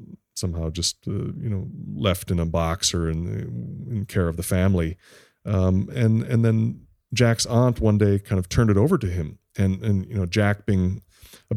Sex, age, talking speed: male, 30-49, 195 wpm